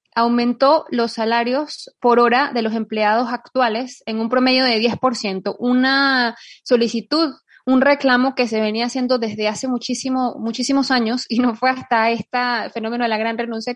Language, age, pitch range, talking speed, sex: Spanish, 20-39, 220-255 Hz, 160 wpm, female